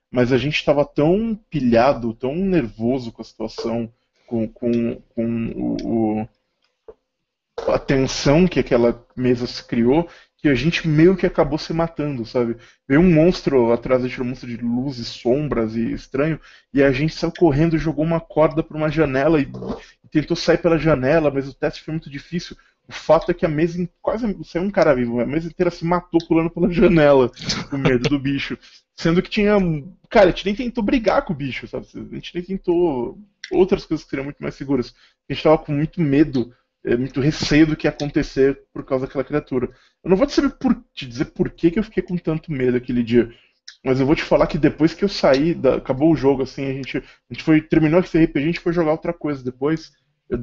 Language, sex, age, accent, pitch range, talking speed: Portuguese, male, 20-39, Brazilian, 130-170 Hz, 210 wpm